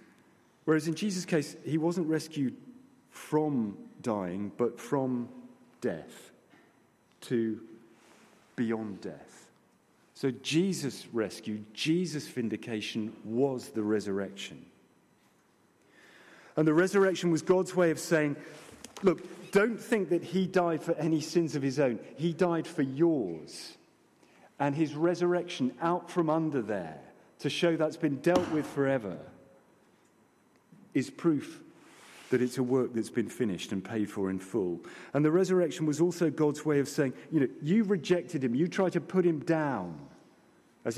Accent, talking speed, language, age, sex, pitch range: British, 140 wpm, English, 40-59, male, 120-170 Hz